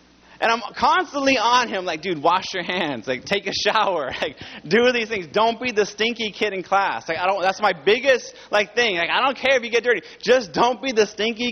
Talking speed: 240 wpm